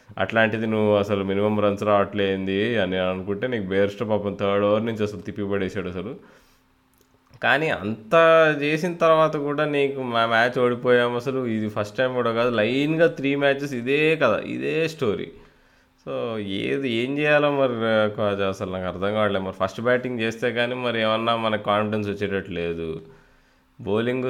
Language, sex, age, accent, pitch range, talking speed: Telugu, male, 20-39, native, 100-120 Hz, 145 wpm